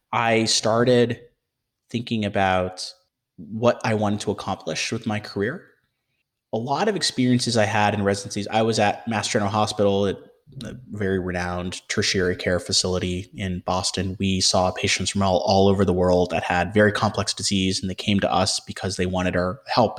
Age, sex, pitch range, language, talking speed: 30-49, male, 95-110 Hz, English, 175 wpm